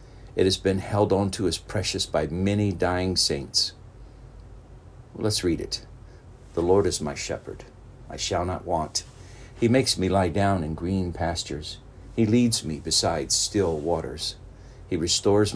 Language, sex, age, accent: English, male, 60-79, American